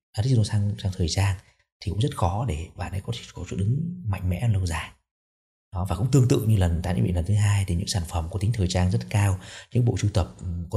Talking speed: 265 wpm